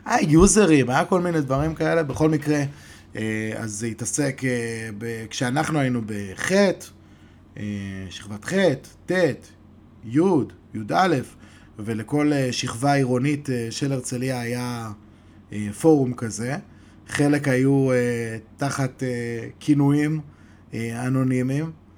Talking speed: 90 wpm